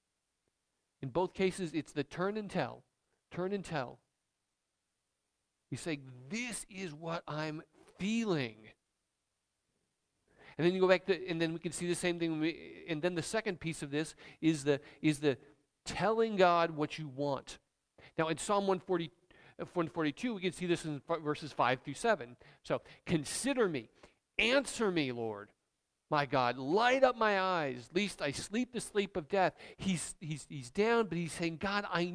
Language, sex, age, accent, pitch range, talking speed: English, male, 40-59, American, 150-185 Hz, 170 wpm